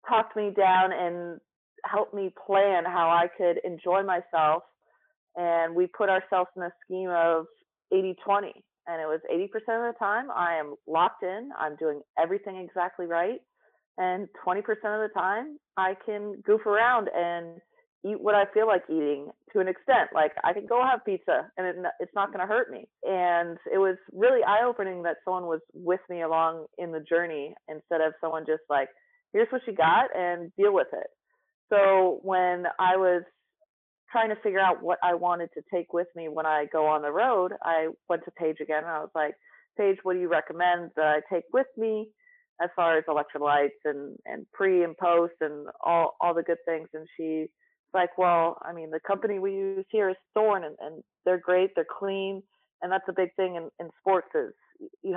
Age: 30-49